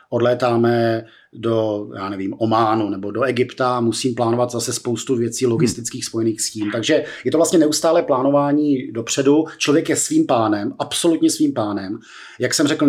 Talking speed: 165 wpm